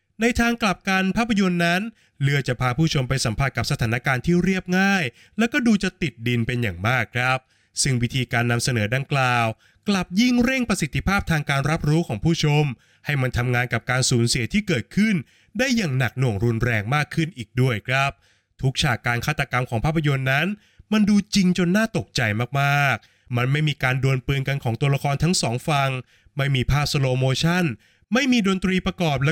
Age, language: 20-39, Thai